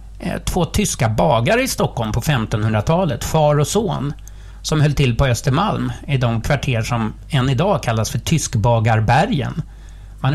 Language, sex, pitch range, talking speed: English, male, 110-150 Hz, 145 wpm